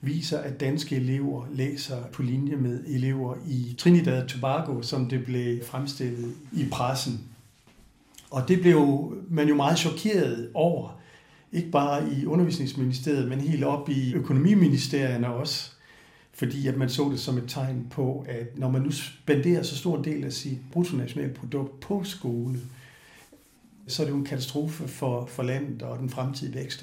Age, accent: 60-79, native